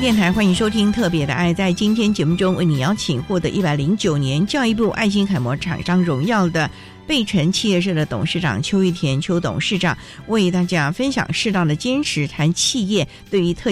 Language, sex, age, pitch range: Chinese, female, 50-69, 160-220 Hz